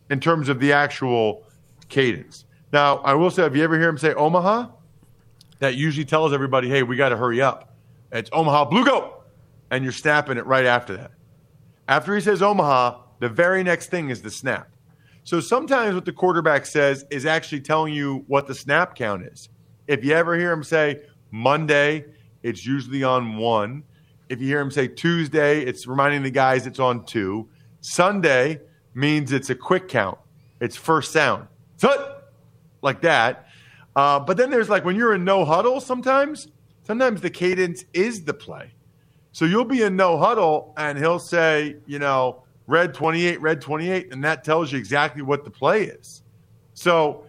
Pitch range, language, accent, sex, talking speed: 130-170 Hz, English, American, male, 180 wpm